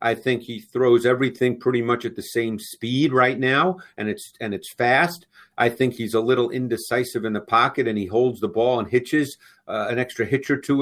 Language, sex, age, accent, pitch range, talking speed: English, male, 50-69, American, 120-145 Hz, 220 wpm